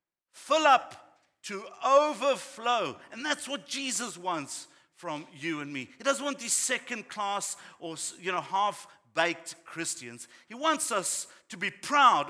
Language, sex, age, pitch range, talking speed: English, male, 50-69, 160-245 Hz, 150 wpm